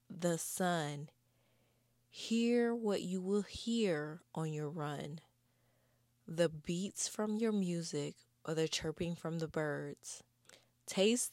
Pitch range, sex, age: 140-180 Hz, female, 20-39